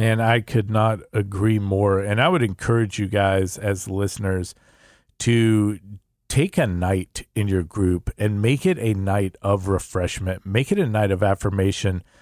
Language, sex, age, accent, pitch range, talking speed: English, male, 40-59, American, 100-125 Hz, 165 wpm